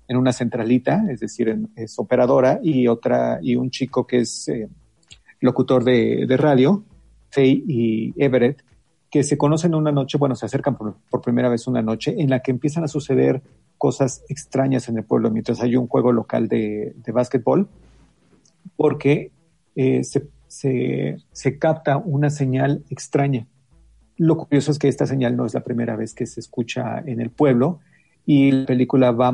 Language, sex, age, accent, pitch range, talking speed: Spanish, male, 40-59, Mexican, 120-145 Hz, 175 wpm